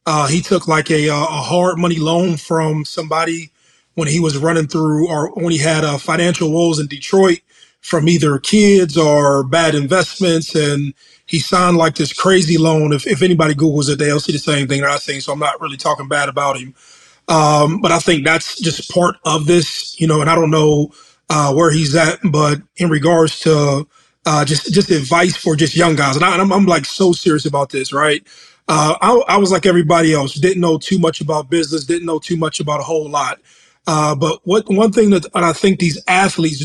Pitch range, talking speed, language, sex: 150-175 Hz, 215 wpm, English, male